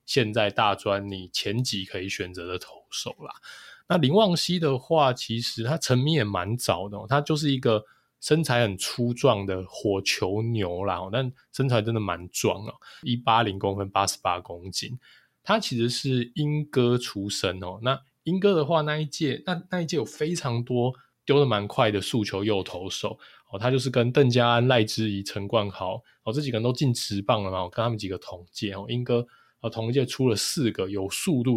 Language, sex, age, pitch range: Chinese, male, 20-39, 100-135 Hz